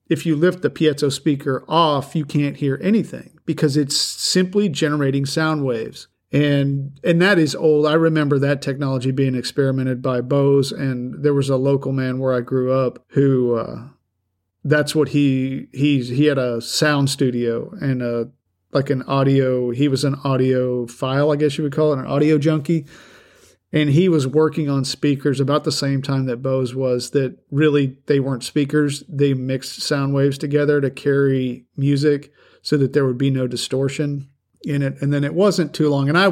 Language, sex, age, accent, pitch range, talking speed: English, male, 50-69, American, 130-150 Hz, 185 wpm